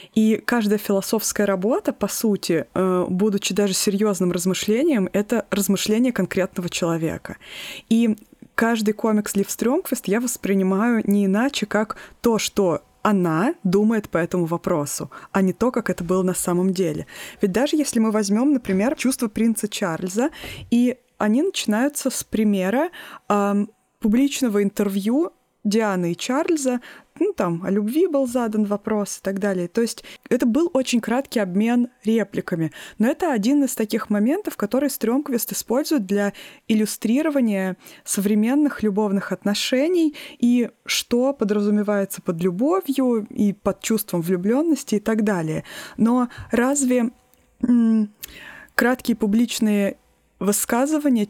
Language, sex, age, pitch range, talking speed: Russian, female, 20-39, 200-250 Hz, 130 wpm